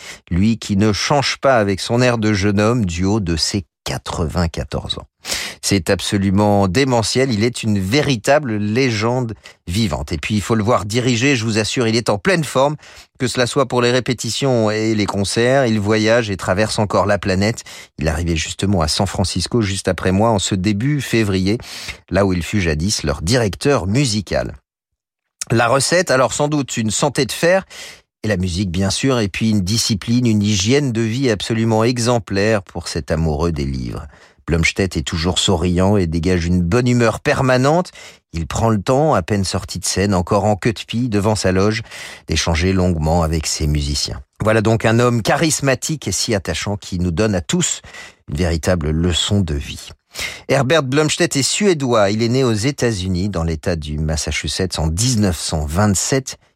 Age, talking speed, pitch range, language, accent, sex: 40-59, 185 wpm, 90-120 Hz, French, French, male